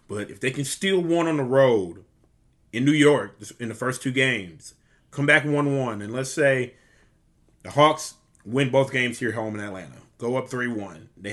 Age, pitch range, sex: 30-49, 115-135 Hz, male